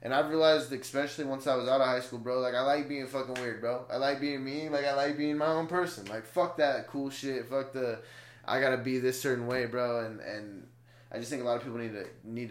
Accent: American